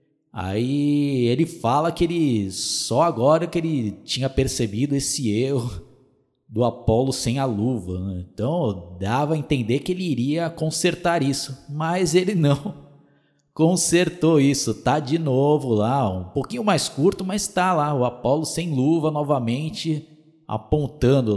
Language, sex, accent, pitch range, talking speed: Portuguese, male, Brazilian, 110-155 Hz, 140 wpm